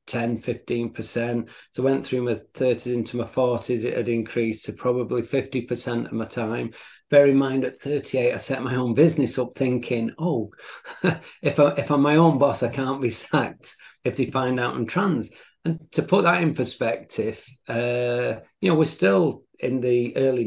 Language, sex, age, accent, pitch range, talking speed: English, male, 40-59, British, 110-130 Hz, 190 wpm